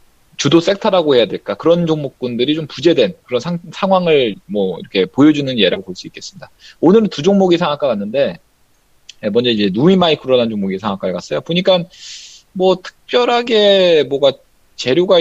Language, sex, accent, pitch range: Korean, male, native, 120-185 Hz